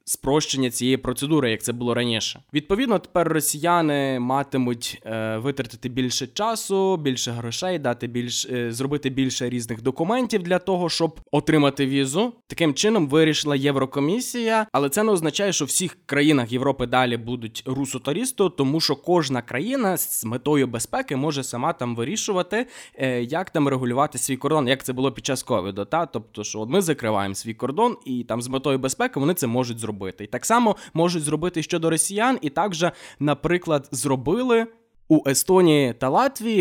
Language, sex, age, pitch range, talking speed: Ukrainian, male, 20-39, 120-165 Hz, 160 wpm